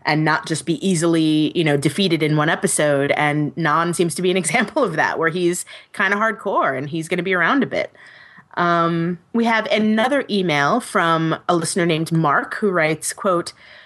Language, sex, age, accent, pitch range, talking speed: English, female, 30-49, American, 150-185 Hz, 200 wpm